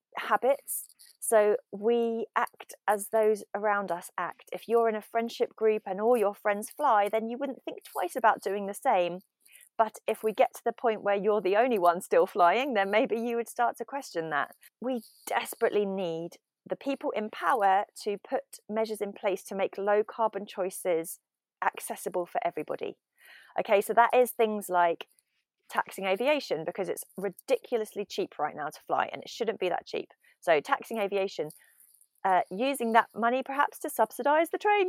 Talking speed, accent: 180 wpm, British